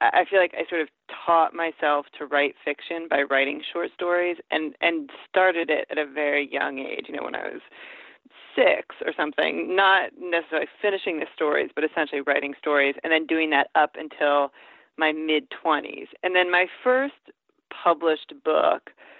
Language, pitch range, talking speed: English, 155-190 Hz, 170 wpm